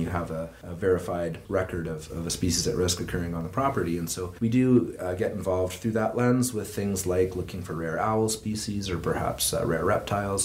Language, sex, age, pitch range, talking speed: English, male, 30-49, 85-100 Hz, 225 wpm